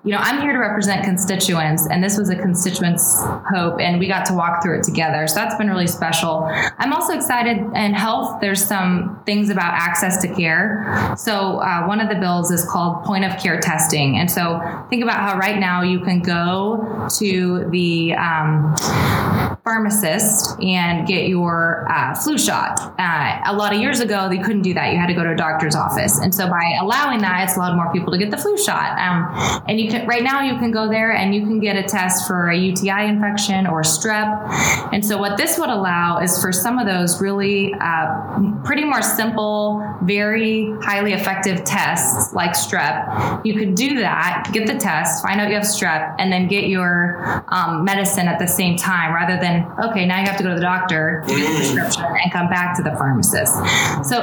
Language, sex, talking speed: English, female, 210 wpm